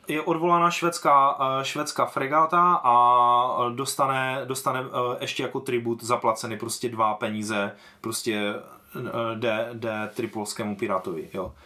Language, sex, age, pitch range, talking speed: Czech, male, 20-39, 120-170 Hz, 105 wpm